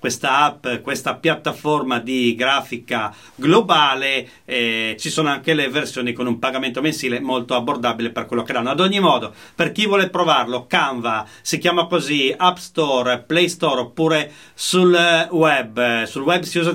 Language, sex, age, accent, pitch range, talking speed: Italian, male, 40-59, native, 130-175 Hz, 160 wpm